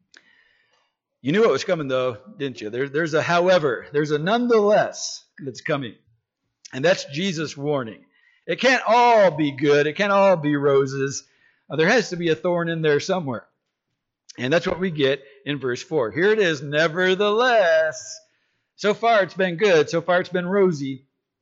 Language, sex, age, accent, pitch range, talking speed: English, male, 50-69, American, 130-180 Hz, 175 wpm